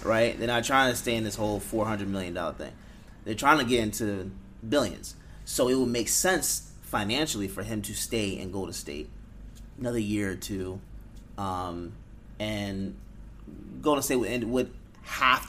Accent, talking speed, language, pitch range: American, 170 wpm, English, 95-120 Hz